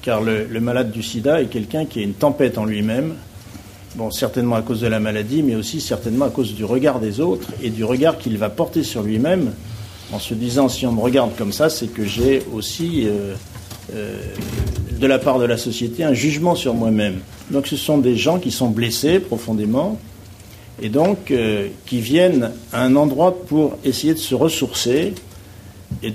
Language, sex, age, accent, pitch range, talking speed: French, male, 50-69, French, 105-135 Hz, 200 wpm